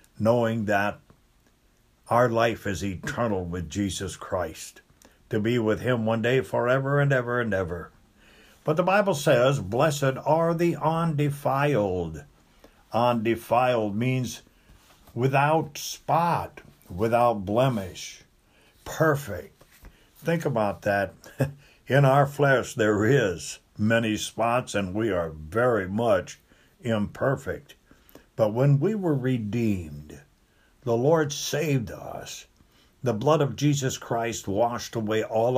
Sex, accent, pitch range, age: male, American, 100-125 Hz, 60-79